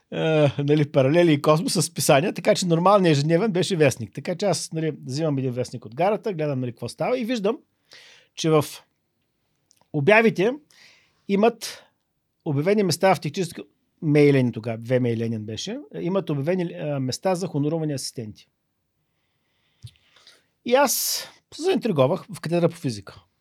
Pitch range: 130-210 Hz